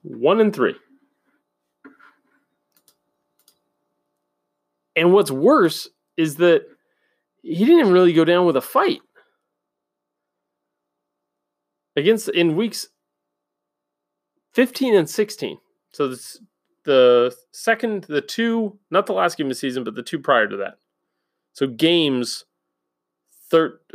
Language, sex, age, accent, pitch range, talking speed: English, male, 30-49, American, 140-225 Hz, 115 wpm